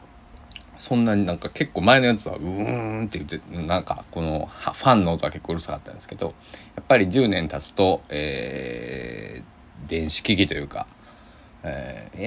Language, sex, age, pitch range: Japanese, male, 20-39, 80-105 Hz